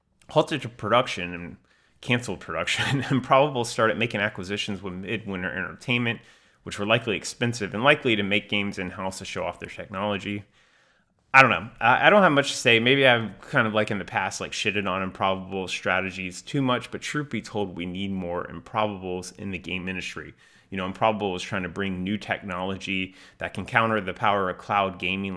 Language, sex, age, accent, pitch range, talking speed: English, male, 30-49, American, 95-115 Hz, 190 wpm